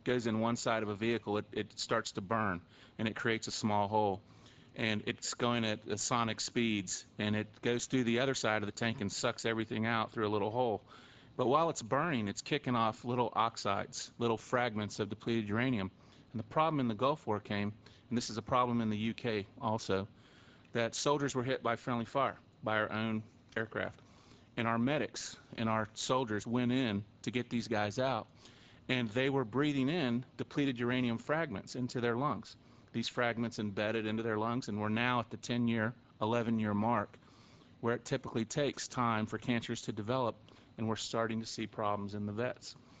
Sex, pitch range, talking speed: male, 110-125 Hz, 195 wpm